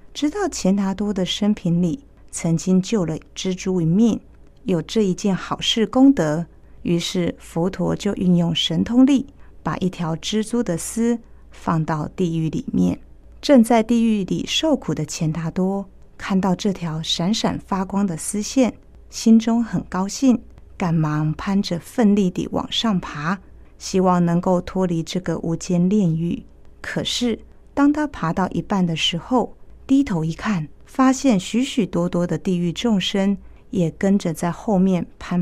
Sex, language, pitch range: female, Chinese, 170-225 Hz